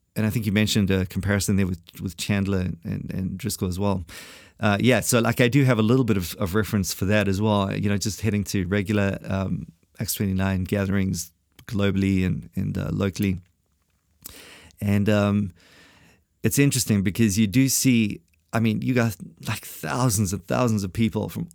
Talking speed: 185 wpm